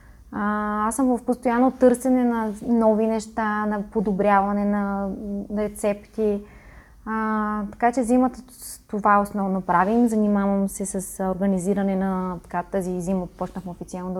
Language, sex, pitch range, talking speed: Bulgarian, female, 190-220 Hz, 125 wpm